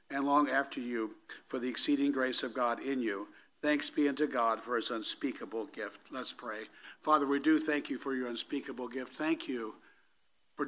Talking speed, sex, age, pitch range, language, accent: 190 wpm, male, 60-79, 130-160 Hz, English, American